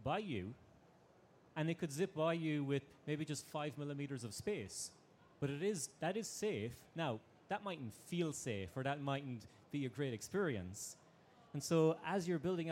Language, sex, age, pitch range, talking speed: English, male, 30-49, 125-160 Hz, 180 wpm